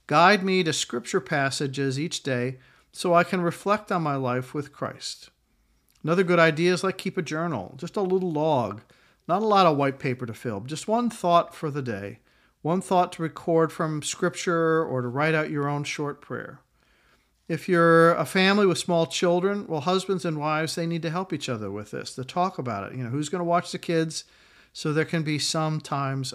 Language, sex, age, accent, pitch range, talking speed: English, male, 50-69, American, 130-170 Hz, 210 wpm